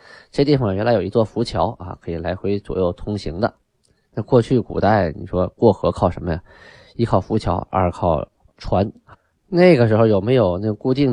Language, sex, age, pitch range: Chinese, male, 20-39, 90-110 Hz